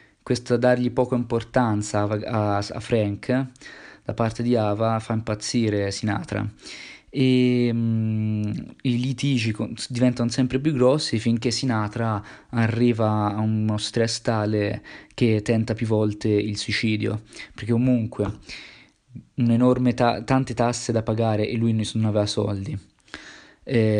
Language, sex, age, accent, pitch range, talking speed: Italian, male, 20-39, native, 105-125 Hz, 130 wpm